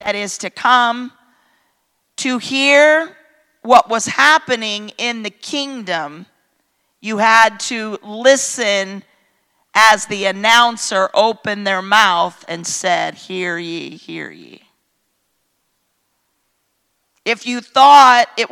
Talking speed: 105 wpm